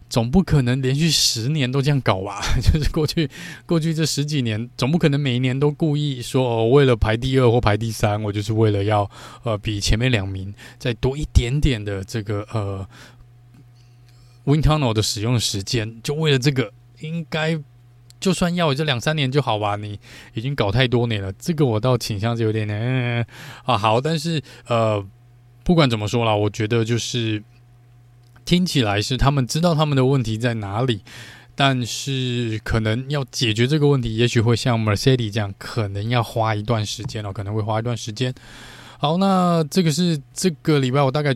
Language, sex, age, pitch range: Chinese, male, 20-39, 115-140 Hz